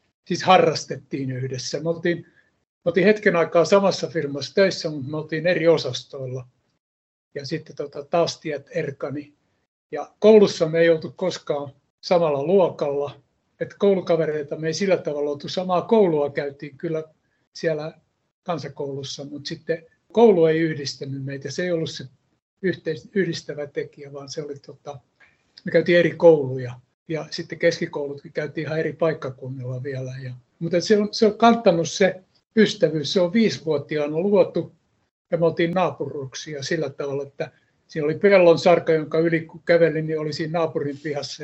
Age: 60-79